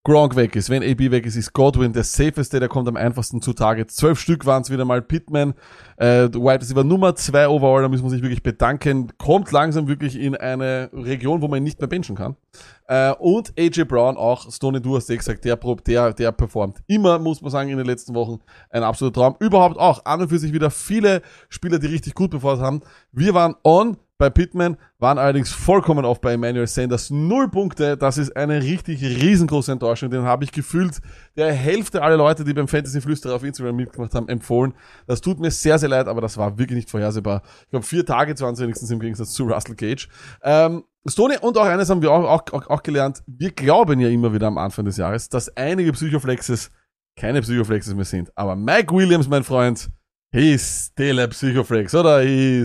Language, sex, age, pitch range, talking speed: German, male, 20-39, 120-155 Hz, 210 wpm